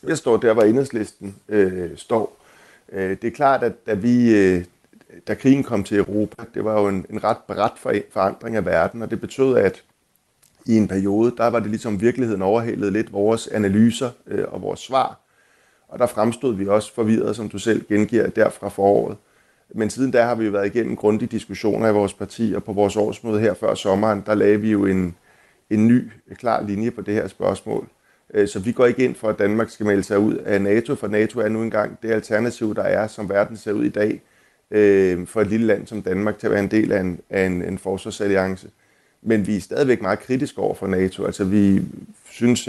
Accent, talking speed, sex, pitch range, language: native, 210 wpm, male, 100-110 Hz, Danish